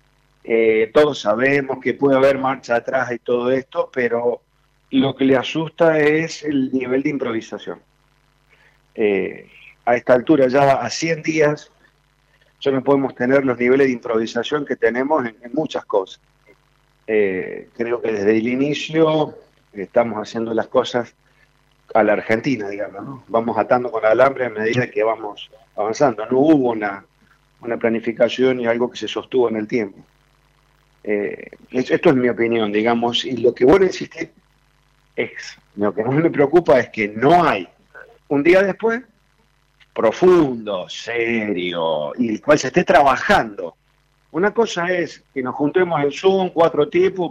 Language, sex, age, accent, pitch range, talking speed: Spanish, male, 40-59, Argentinian, 120-155 Hz, 155 wpm